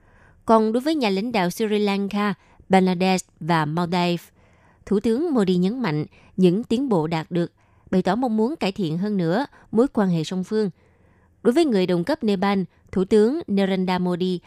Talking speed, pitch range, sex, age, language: 180 wpm, 165-215 Hz, female, 20-39, Vietnamese